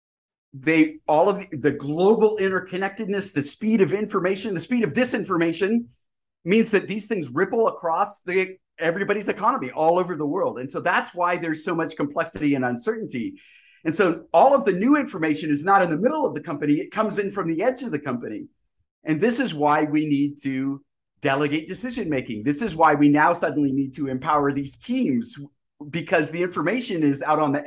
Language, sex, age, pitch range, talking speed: English, male, 30-49, 145-195 Hz, 195 wpm